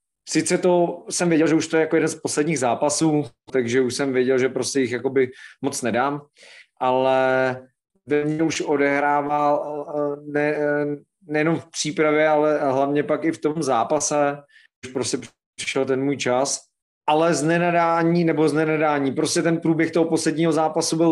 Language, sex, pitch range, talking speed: Slovak, male, 140-160 Hz, 160 wpm